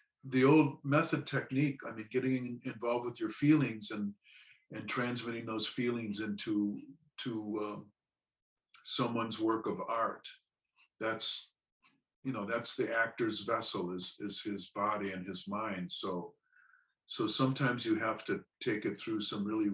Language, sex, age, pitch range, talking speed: English, male, 50-69, 100-140 Hz, 145 wpm